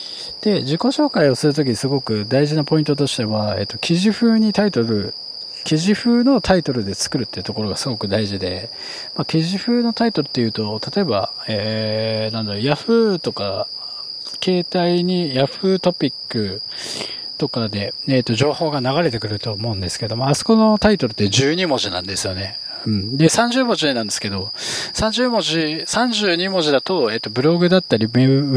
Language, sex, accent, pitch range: Japanese, male, native, 110-175 Hz